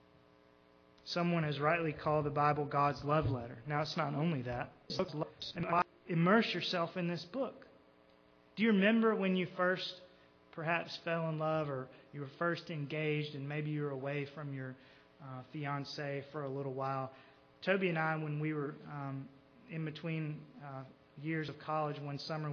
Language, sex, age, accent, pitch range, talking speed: English, male, 30-49, American, 145-185 Hz, 165 wpm